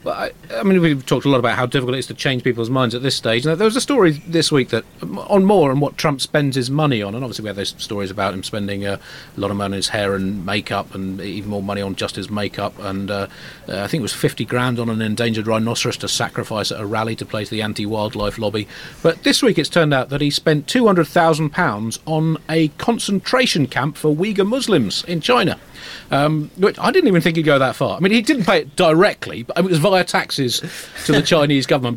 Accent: British